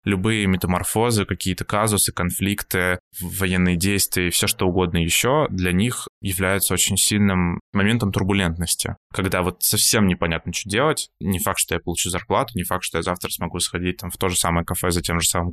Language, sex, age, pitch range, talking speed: Russian, male, 20-39, 85-100 Hz, 180 wpm